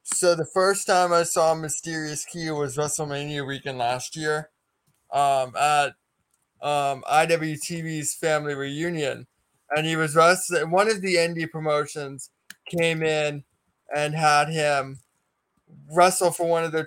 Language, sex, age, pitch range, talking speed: English, male, 20-39, 140-160 Hz, 135 wpm